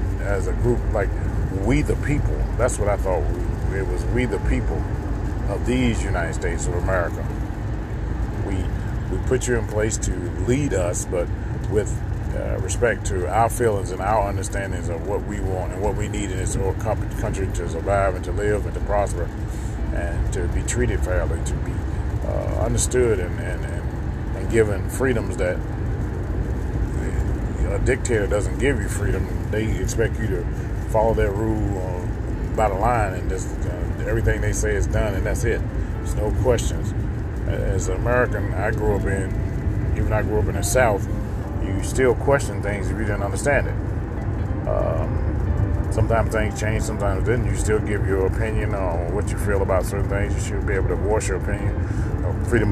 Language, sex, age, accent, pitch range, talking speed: English, male, 40-59, American, 95-110 Hz, 180 wpm